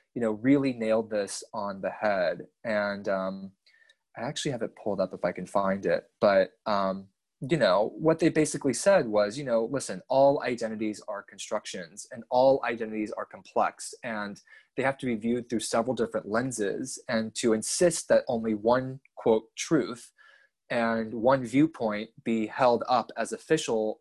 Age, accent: 20-39, American